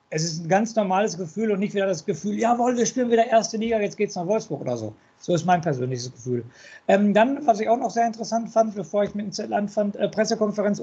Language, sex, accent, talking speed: German, male, German, 255 wpm